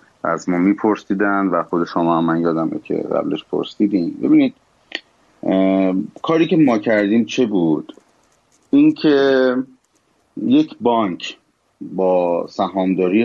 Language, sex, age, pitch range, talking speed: Persian, male, 30-49, 90-115 Hz, 110 wpm